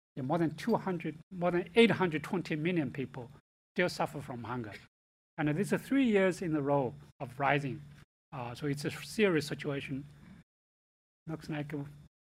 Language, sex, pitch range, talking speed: English, male, 140-165 Hz, 150 wpm